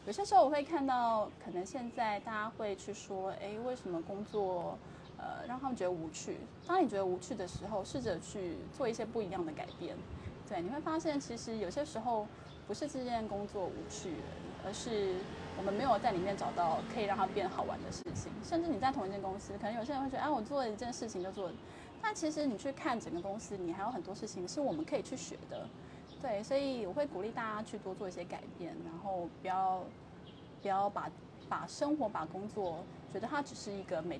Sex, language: female, Chinese